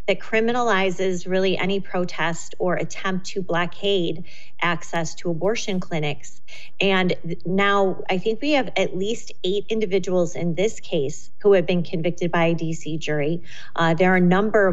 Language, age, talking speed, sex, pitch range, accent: English, 30-49, 160 wpm, female, 170-200 Hz, American